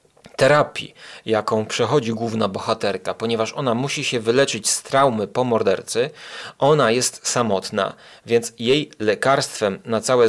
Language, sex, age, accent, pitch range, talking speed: Polish, male, 30-49, native, 110-135 Hz, 130 wpm